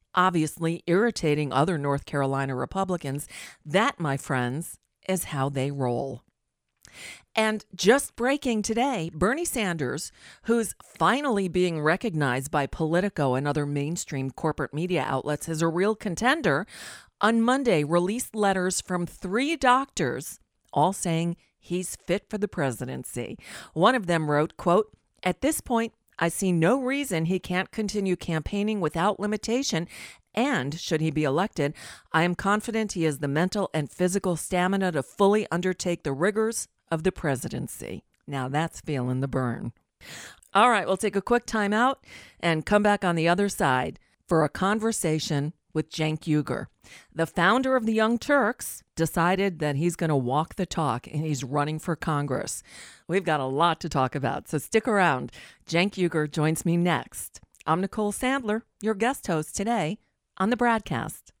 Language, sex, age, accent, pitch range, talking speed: English, female, 40-59, American, 150-210 Hz, 155 wpm